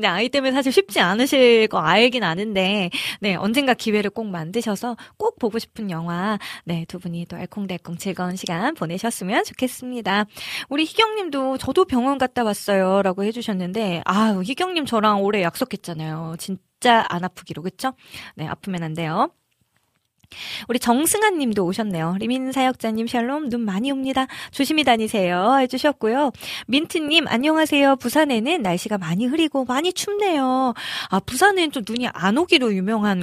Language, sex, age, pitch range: Korean, female, 20-39, 190-265 Hz